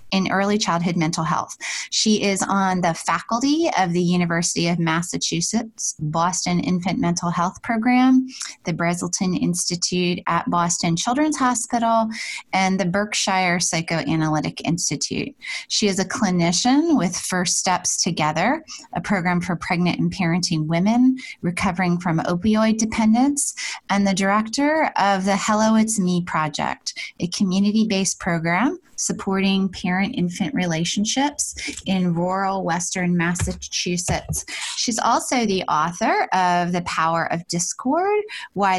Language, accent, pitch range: English, American, 170-220 Hz